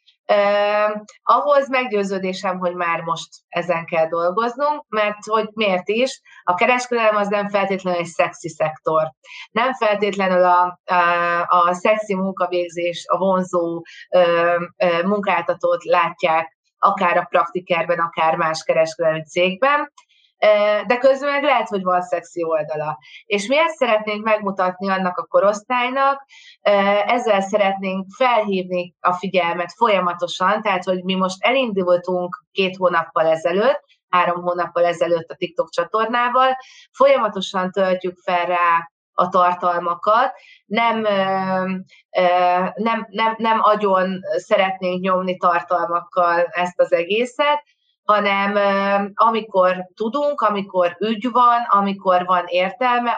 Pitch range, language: 175-220 Hz, Hungarian